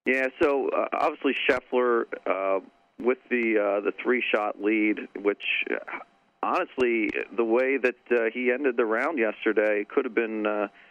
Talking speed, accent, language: 155 wpm, American, English